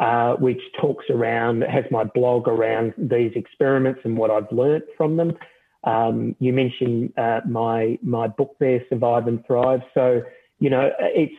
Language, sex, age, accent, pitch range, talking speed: English, male, 40-59, Australian, 120-135 Hz, 165 wpm